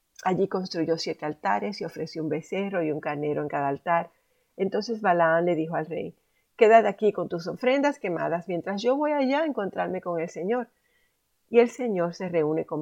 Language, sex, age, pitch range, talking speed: Spanish, female, 50-69, 165-225 Hz, 190 wpm